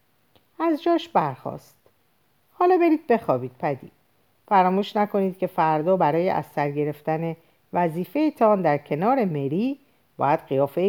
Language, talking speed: Persian, 110 wpm